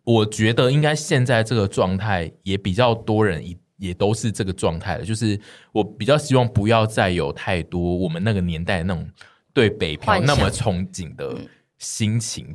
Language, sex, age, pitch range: Chinese, male, 20-39, 95-120 Hz